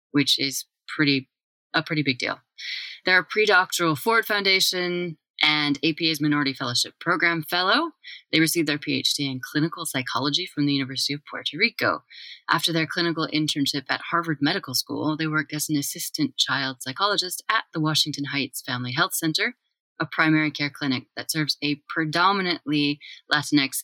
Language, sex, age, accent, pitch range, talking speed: English, female, 30-49, American, 135-170 Hz, 155 wpm